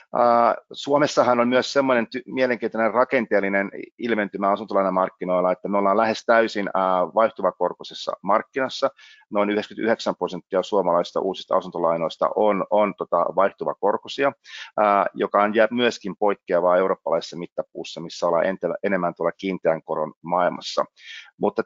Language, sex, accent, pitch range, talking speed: Finnish, male, native, 95-115 Hz, 110 wpm